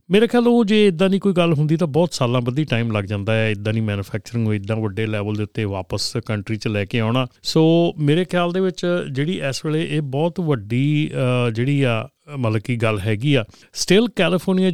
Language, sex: Punjabi, male